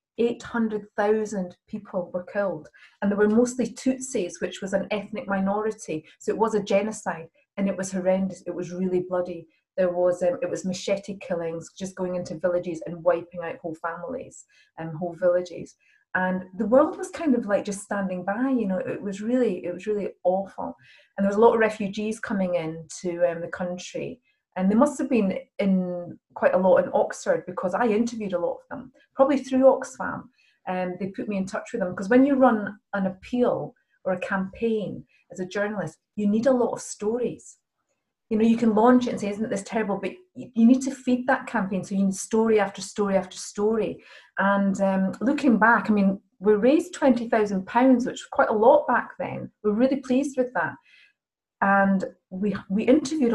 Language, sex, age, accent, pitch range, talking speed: English, female, 30-49, British, 185-240 Hz, 200 wpm